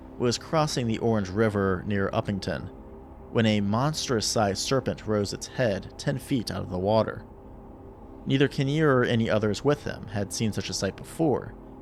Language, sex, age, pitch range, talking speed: English, male, 30-49, 100-130 Hz, 170 wpm